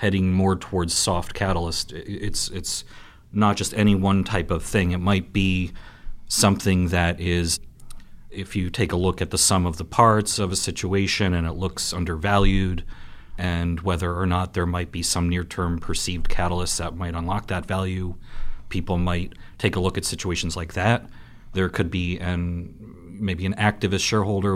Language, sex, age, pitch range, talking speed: English, male, 40-59, 90-100 Hz, 175 wpm